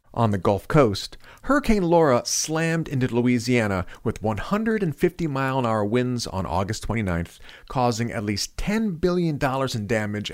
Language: English